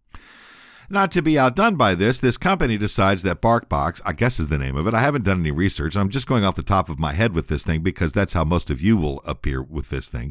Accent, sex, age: American, male, 50-69